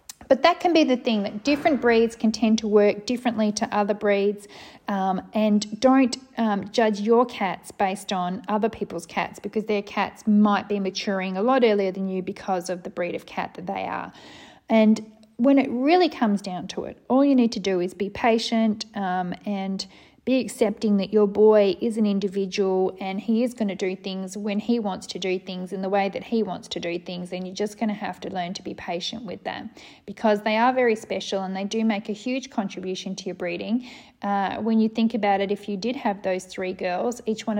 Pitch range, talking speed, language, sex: 195-230 Hz, 220 wpm, English, female